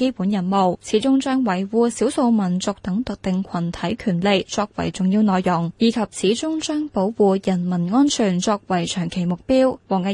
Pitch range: 195-255 Hz